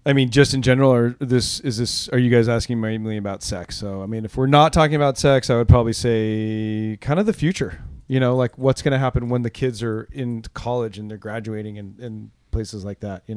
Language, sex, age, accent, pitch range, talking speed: English, male, 30-49, American, 110-130 Hz, 245 wpm